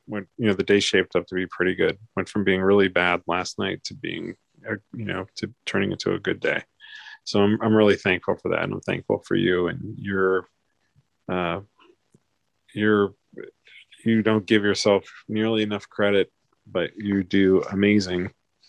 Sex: male